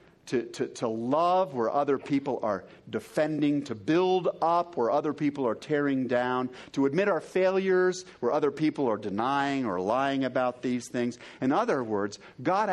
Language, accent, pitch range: English, American, 120-165 Hz